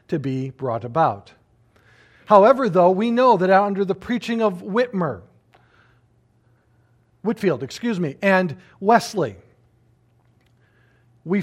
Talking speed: 105 wpm